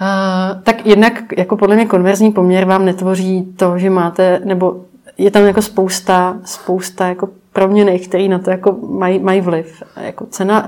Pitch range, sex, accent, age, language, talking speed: 175-195 Hz, female, native, 30-49, Czech, 165 wpm